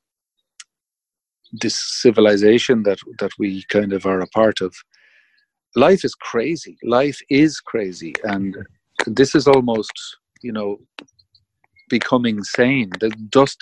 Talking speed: 120 wpm